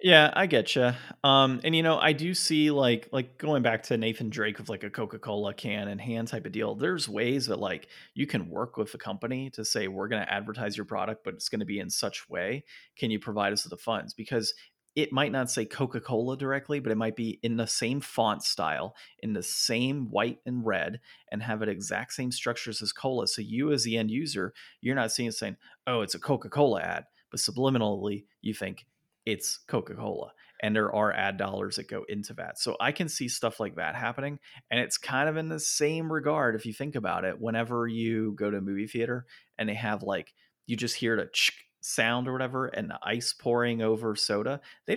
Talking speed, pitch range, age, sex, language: 220 wpm, 110-130 Hz, 30-49, male, English